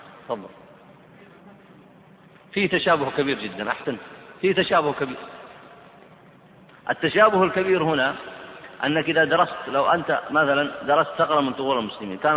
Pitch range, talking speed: 135-175 Hz, 110 wpm